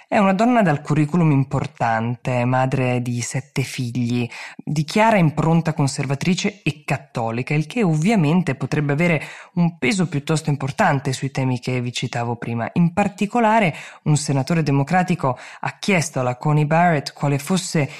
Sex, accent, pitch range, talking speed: female, native, 135-165 Hz, 145 wpm